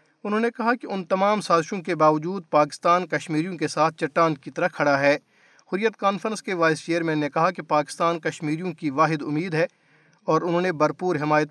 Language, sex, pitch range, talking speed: Urdu, male, 150-175 Hz, 200 wpm